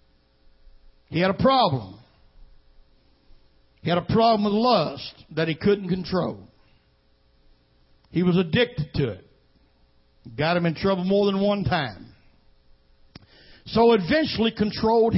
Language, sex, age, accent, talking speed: English, male, 60-79, American, 120 wpm